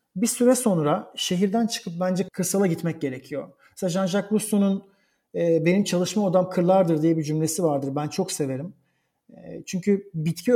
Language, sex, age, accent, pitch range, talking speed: Turkish, male, 40-59, native, 150-185 Hz, 155 wpm